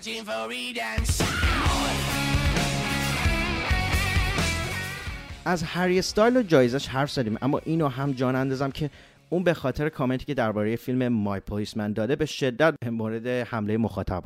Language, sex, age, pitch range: English, male, 30-49, 95-130 Hz